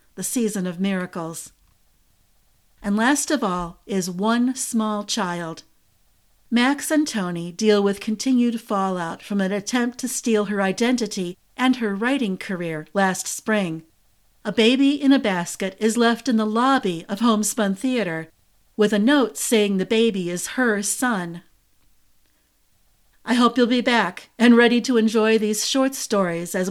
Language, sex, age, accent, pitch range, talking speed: English, female, 50-69, American, 185-245 Hz, 150 wpm